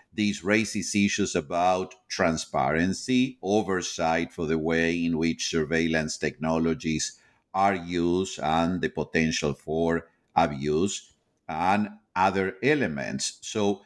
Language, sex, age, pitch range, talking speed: English, male, 50-69, 90-125 Hz, 105 wpm